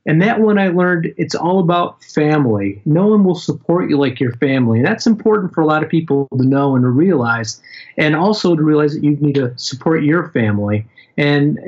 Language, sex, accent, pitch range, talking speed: English, male, American, 135-170 Hz, 210 wpm